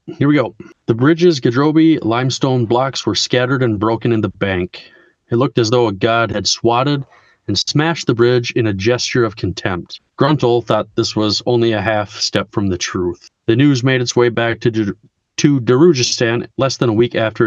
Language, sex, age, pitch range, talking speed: English, male, 30-49, 105-125 Hz, 195 wpm